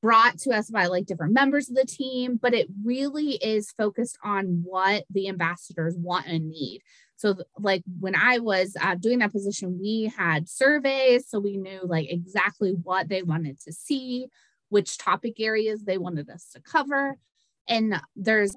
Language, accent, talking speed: English, American, 175 wpm